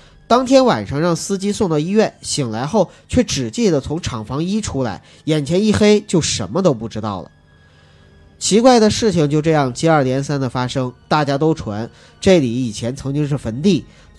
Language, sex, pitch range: Chinese, male, 115-190 Hz